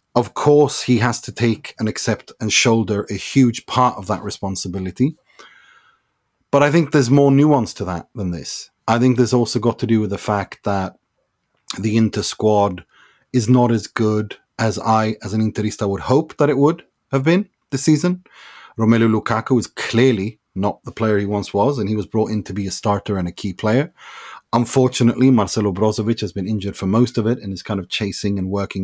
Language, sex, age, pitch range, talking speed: English, male, 30-49, 100-125 Hz, 205 wpm